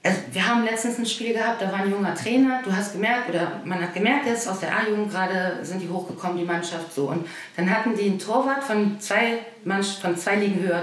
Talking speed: 245 wpm